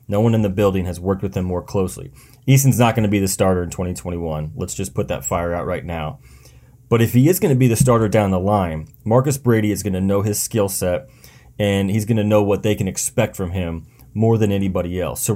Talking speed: 255 wpm